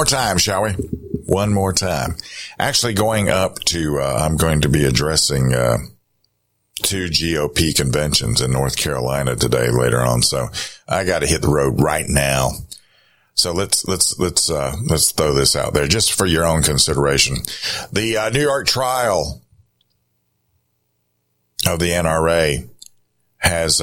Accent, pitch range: American, 70-95 Hz